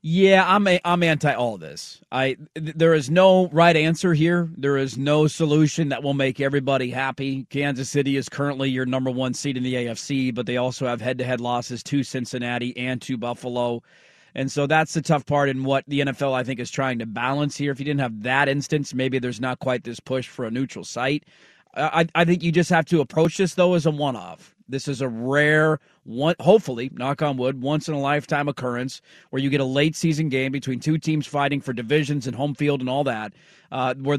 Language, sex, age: English, male, 40-59